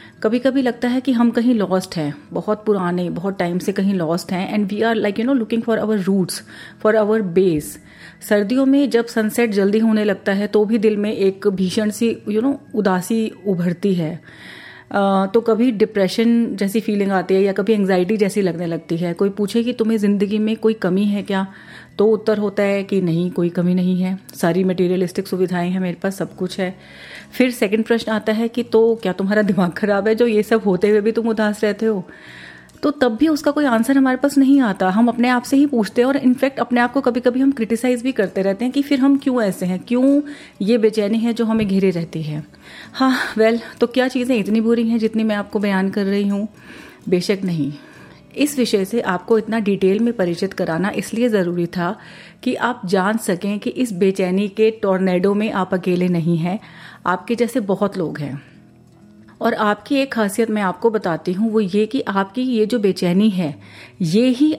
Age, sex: 30-49, female